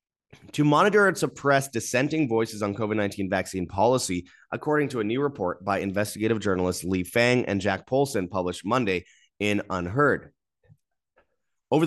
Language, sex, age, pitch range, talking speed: English, male, 30-49, 100-140 Hz, 140 wpm